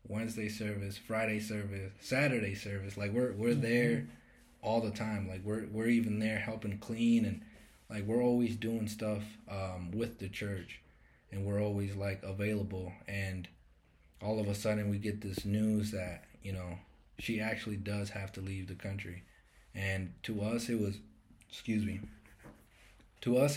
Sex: male